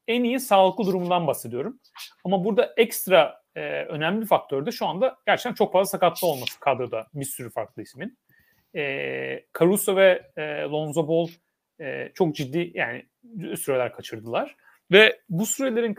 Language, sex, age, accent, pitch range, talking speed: Turkish, male, 40-59, native, 135-210 Hz, 145 wpm